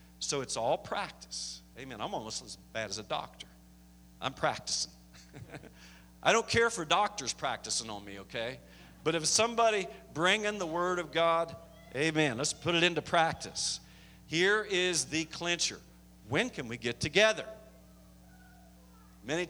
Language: English